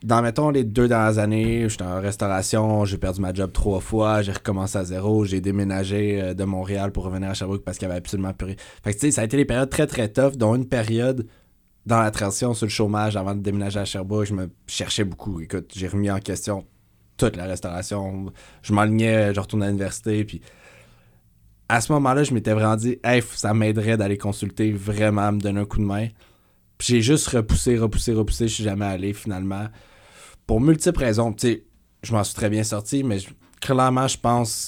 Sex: male